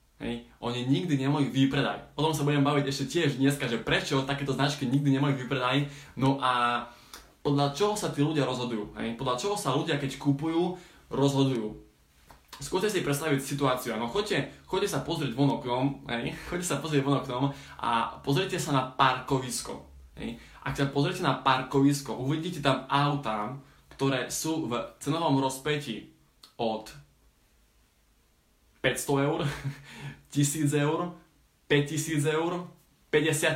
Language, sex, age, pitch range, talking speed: Slovak, male, 20-39, 130-155 Hz, 135 wpm